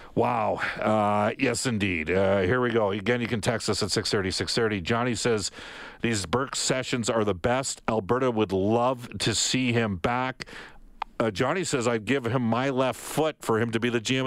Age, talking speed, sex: 50-69, 195 wpm, male